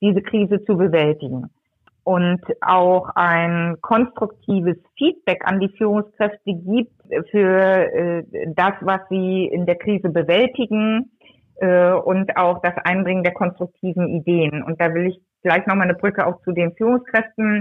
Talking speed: 145 wpm